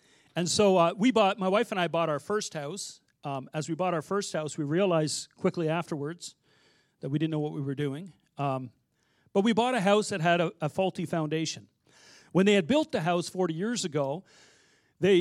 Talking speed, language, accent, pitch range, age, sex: 215 wpm, English, American, 150-195 Hz, 50-69, male